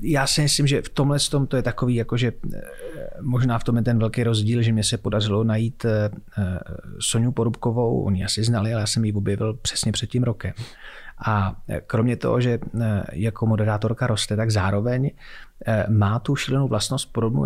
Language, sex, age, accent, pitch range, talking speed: Czech, male, 30-49, native, 105-125 Hz, 180 wpm